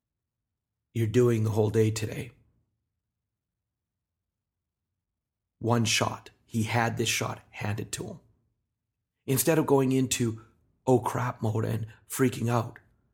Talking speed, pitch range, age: 115 wpm, 110-125 Hz, 40-59